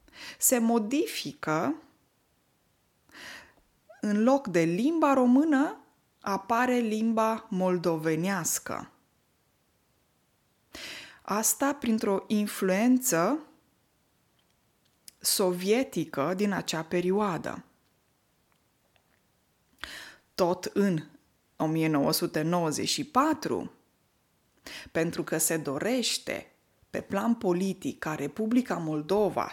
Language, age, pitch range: Romanian, 20-39, 170-240 Hz